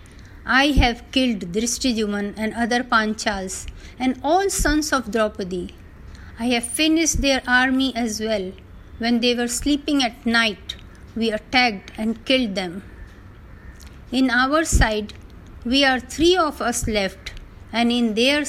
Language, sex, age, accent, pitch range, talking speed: Hindi, female, 50-69, native, 180-275 Hz, 140 wpm